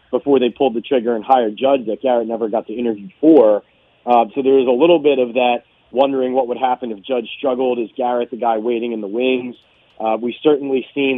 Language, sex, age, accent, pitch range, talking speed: English, male, 30-49, American, 115-135 Hz, 230 wpm